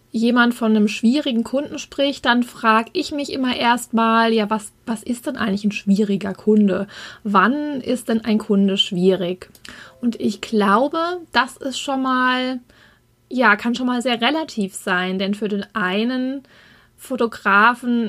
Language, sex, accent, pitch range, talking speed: German, female, German, 215-255 Hz, 155 wpm